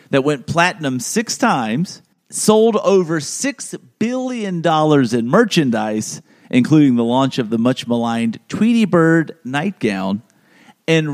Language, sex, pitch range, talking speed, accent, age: English, male, 125-200 Hz, 115 wpm, American, 50-69